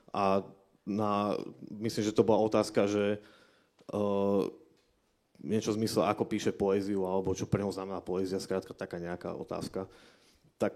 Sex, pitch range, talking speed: male, 100-115 Hz, 140 wpm